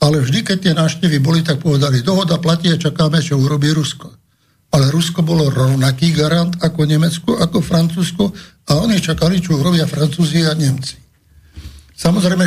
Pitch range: 140-170 Hz